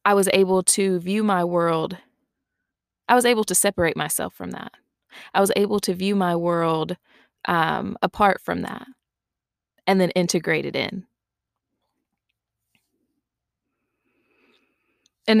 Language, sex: English, female